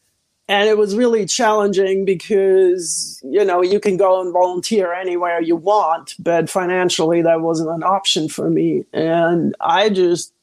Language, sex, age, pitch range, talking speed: English, male, 50-69, 180-215 Hz, 155 wpm